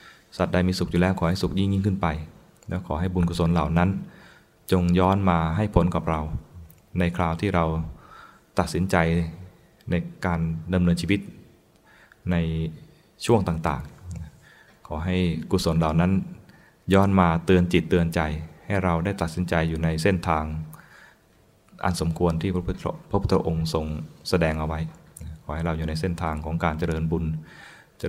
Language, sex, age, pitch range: Thai, male, 20-39, 80-95 Hz